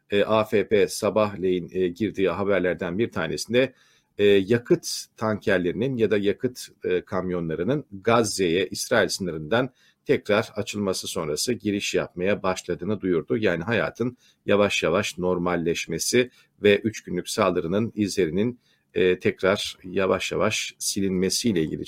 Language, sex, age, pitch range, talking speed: Turkish, male, 50-69, 100-130 Hz, 115 wpm